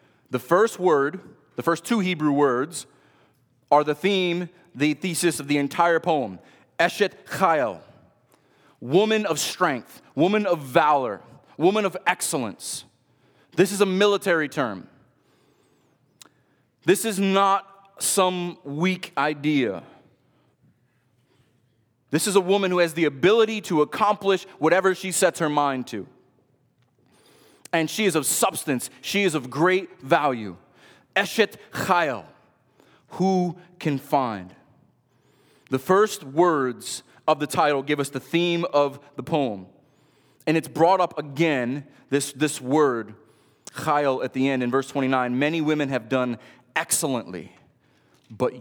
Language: English